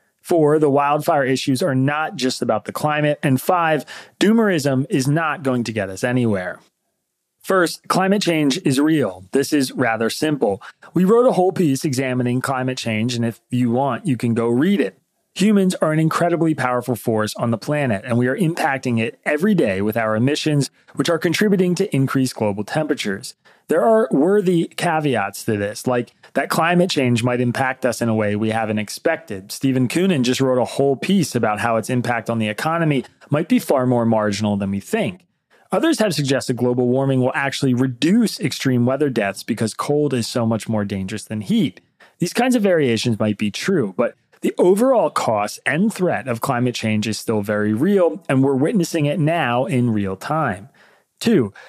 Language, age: English, 30-49